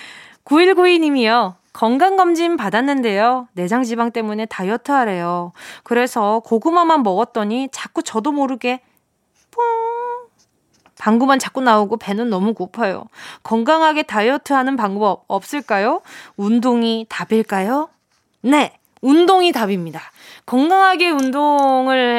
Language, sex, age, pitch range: Korean, female, 20-39, 205-310 Hz